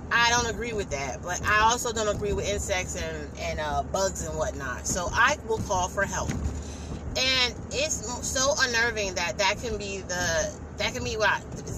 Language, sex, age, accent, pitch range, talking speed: English, female, 30-49, American, 190-240 Hz, 195 wpm